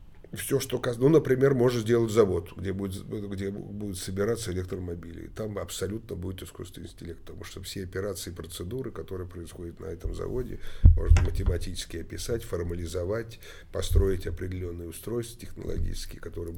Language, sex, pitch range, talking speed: Russian, male, 85-105 Hz, 140 wpm